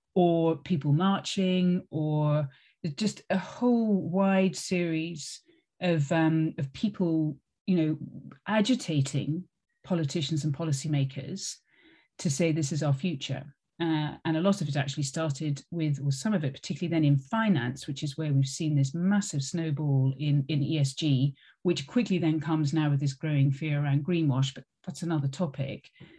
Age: 40-59